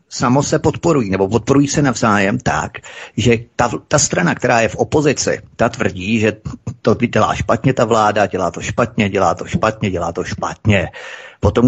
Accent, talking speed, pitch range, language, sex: native, 175 wpm, 100-120 Hz, Czech, male